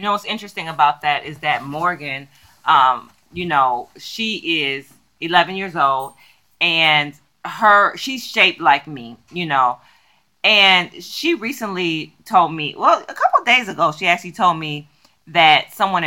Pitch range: 150-195 Hz